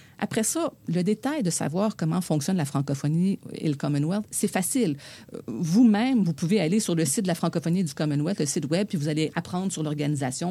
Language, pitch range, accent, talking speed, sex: French, 145-185 Hz, Canadian, 210 wpm, female